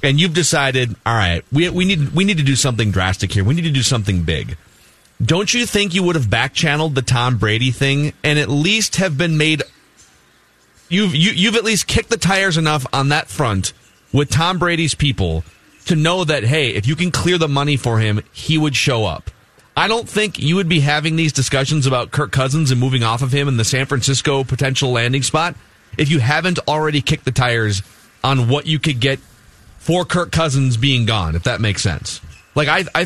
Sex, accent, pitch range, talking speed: male, American, 125-175 Hz, 215 wpm